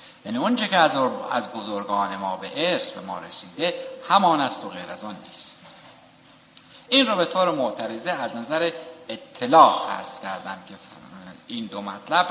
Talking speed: 140 wpm